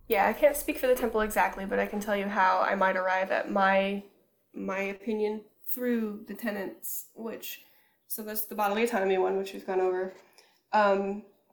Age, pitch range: 10-29, 195-230 Hz